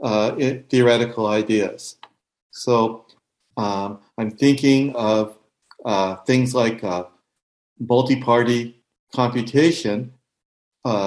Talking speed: 90 wpm